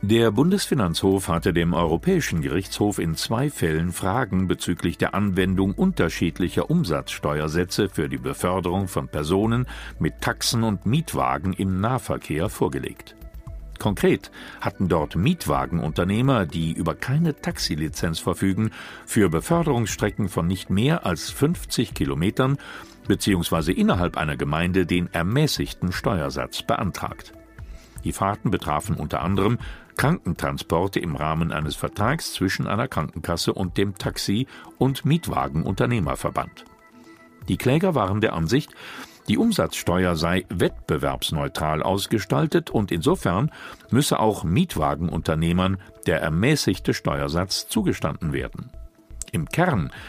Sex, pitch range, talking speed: male, 85-110 Hz, 110 wpm